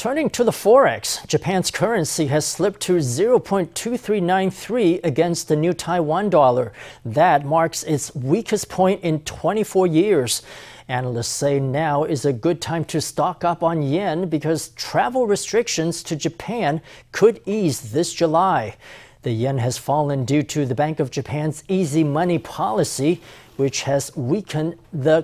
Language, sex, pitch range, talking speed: English, male, 140-175 Hz, 145 wpm